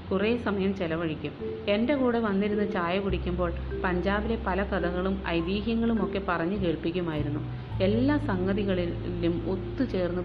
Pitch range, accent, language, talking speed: 170-210 Hz, native, Malayalam, 100 wpm